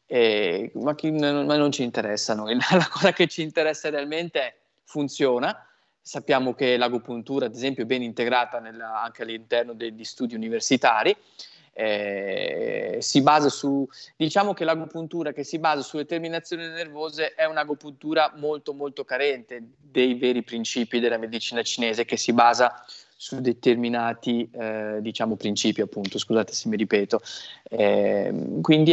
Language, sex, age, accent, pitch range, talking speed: Italian, male, 20-39, native, 125-155 Hz, 140 wpm